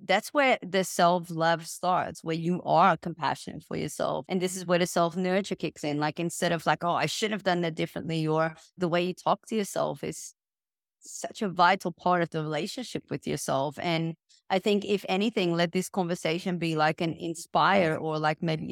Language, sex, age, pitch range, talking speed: English, female, 20-39, 165-200 Hz, 200 wpm